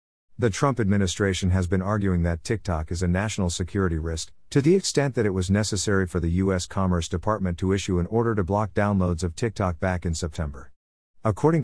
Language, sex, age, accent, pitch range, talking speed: English, male, 50-69, American, 90-115 Hz, 195 wpm